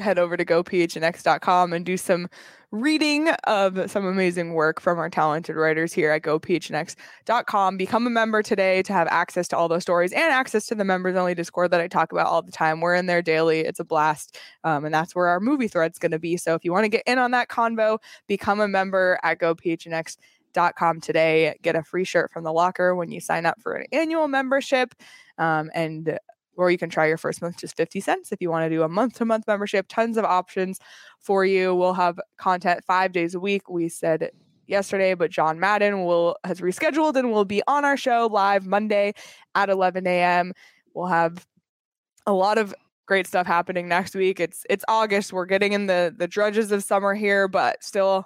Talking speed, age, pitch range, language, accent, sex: 210 wpm, 20-39, 170-205 Hz, English, American, female